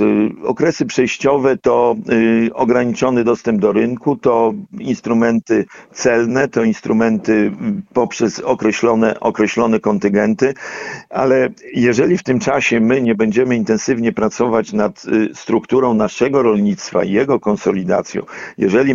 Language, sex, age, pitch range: Polish, male, 50-69, 110-135 Hz